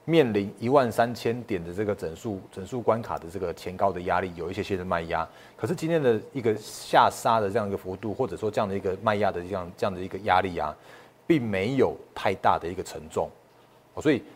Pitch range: 95-115 Hz